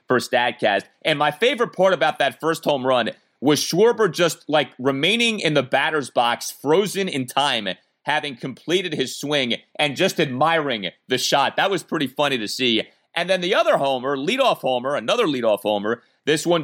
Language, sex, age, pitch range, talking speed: English, male, 30-49, 120-155 Hz, 175 wpm